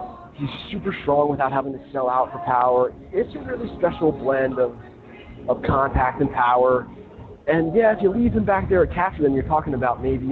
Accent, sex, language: American, male, English